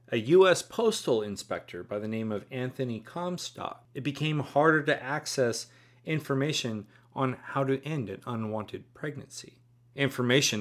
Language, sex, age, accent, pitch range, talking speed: English, male, 30-49, American, 115-145 Hz, 135 wpm